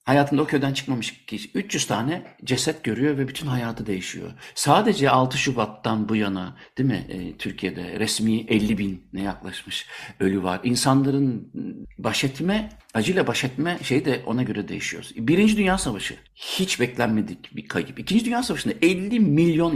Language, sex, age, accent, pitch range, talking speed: Turkish, male, 60-79, native, 110-150 Hz, 160 wpm